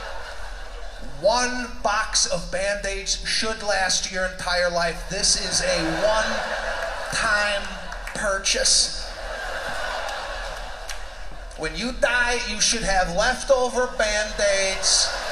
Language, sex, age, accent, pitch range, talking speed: English, male, 40-59, American, 215-275 Hz, 85 wpm